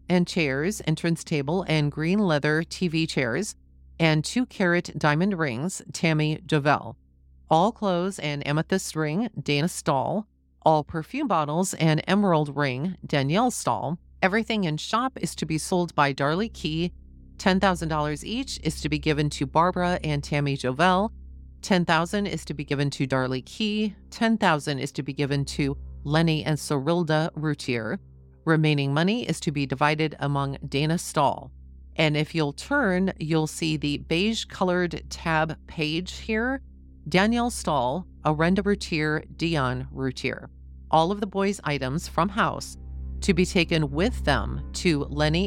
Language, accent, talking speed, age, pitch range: English, American, 145 wpm, 40-59, 145-180 Hz